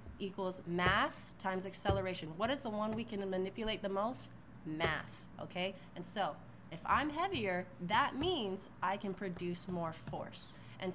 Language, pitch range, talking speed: English, 175-205 Hz, 155 wpm